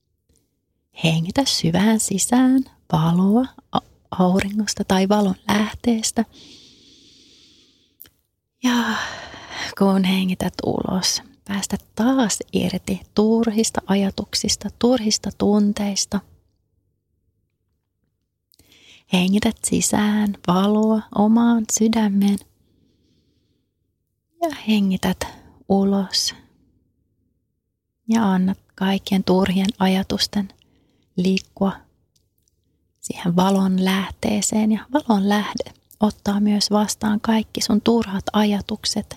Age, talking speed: 30-49, 70 wpm